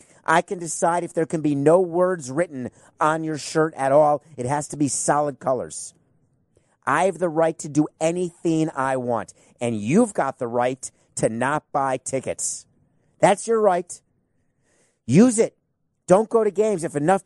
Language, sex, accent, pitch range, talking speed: English, male, American, 140-175 Hz, 175 wpm